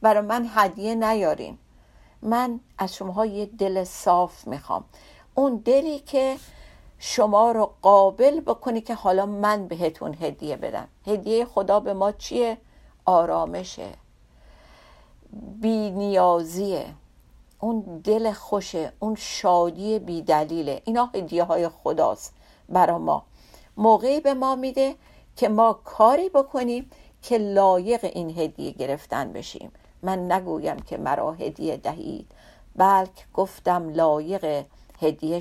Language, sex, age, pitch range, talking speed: Persian, female, 50-69, 185-240 Hz, 115 wpm